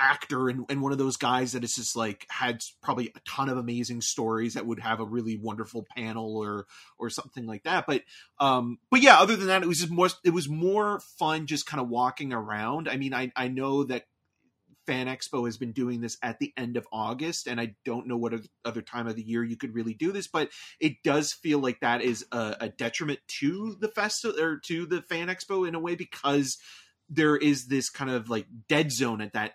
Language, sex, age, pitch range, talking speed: English, male, 30-49, 115-145 Hz, 230 wpm